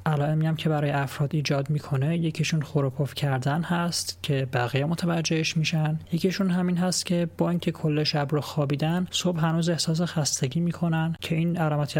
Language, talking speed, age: Persian, 175 wpm, 30-49